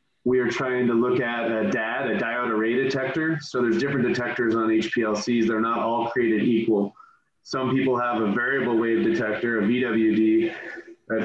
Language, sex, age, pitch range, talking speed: English, male, 30-49, 115-135 Hz, 175 wpm